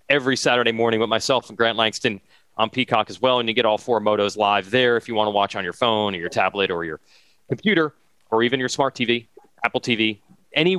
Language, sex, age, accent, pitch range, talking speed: English, male, 30-49, American, 130-190 Hz, 235 wpm